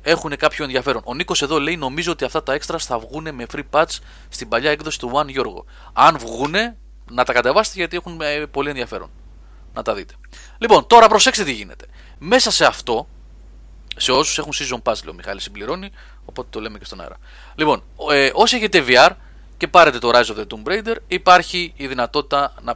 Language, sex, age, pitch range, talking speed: Greek, male, 30-49, 115-165 Hz, 200 wpm